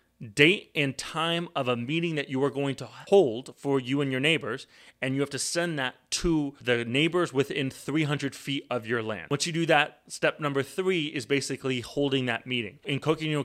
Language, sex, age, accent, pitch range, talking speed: English, male, 30-49, American, 115-145 Hz, 205 wpm